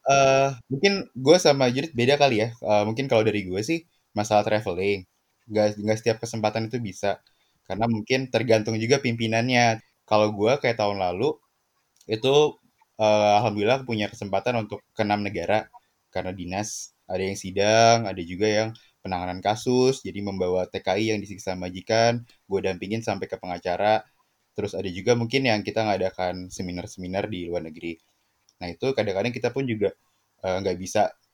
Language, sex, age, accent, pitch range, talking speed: Indonesian, male, 20-39, native, 95-120 Hz, 155 wpm